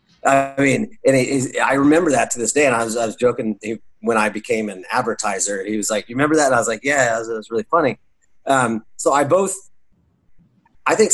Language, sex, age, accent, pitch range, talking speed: English, male, 30-49, American, 110-135 Hz, 240 wpm